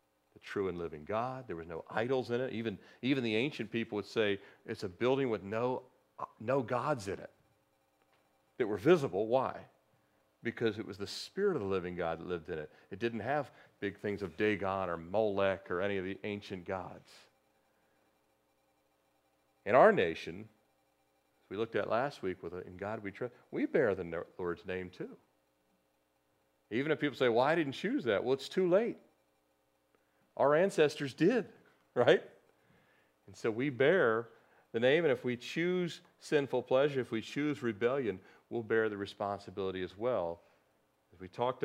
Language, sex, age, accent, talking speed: English, male, 40-59, American, 175 wpm